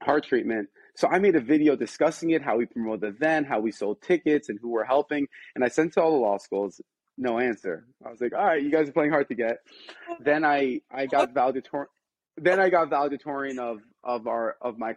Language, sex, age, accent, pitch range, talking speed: English, male, 20-39, American, 120-175 Hz, 235 wpm